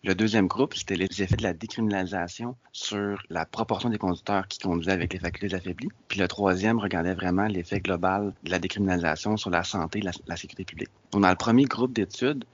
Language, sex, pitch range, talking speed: English, male, 90-110 Hz, 205 wpm